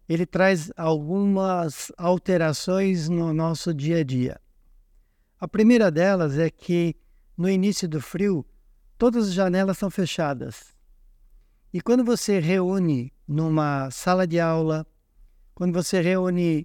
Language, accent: Portuguese, Brazilian